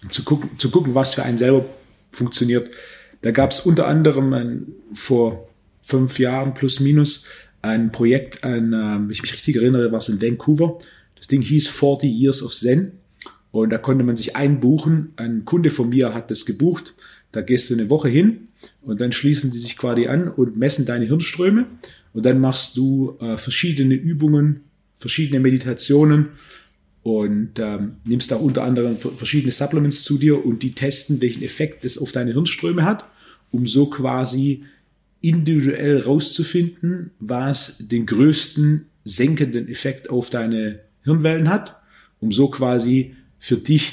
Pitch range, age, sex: 120-145 Hz, 30-49, male